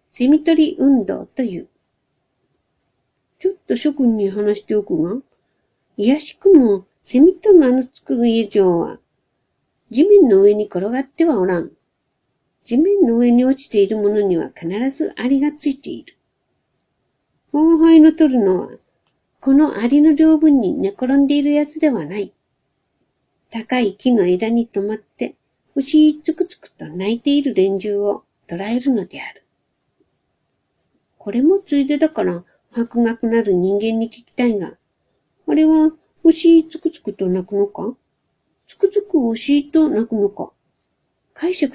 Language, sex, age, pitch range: Japanese, female, 60-79, 215-310 Hz